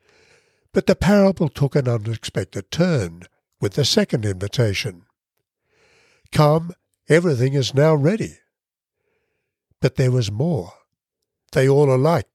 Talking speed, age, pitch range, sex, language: 110 wpm, 60-79, 110-155 Hz, male, English